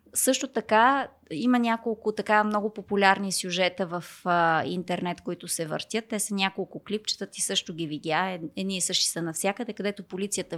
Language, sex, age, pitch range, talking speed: Bulgarian, female, 20-39, 195-230 Hz, 160 wpm